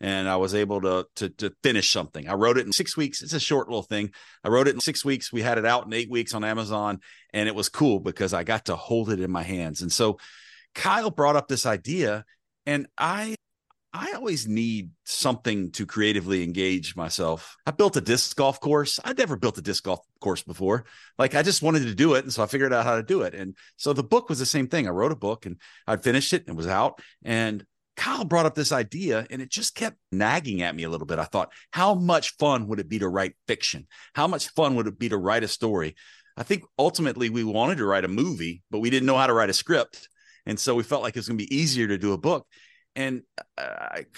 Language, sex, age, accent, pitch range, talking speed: English, male, 40-59, American, 100-140 Hz, 255 wpm